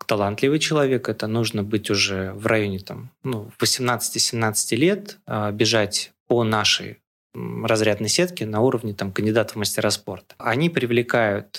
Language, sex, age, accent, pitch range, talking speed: Russian, male, 20-39, native, 105-135 Hz, 140 wpm